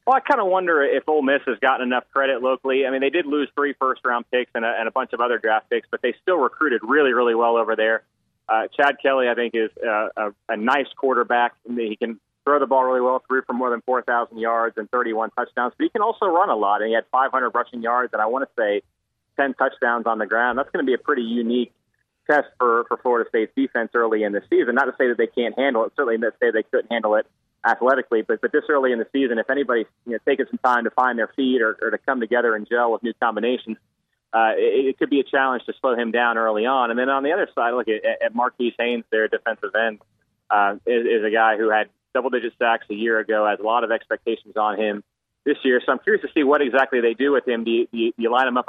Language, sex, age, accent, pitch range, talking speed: English, male, 30-49, American, 115-130 Hz, 270 wpm